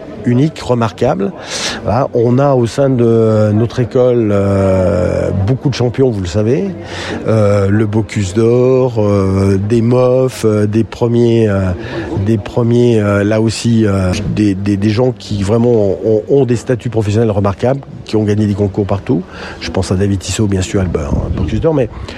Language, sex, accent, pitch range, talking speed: French, male, French, 105-135 Hz, 175 wpm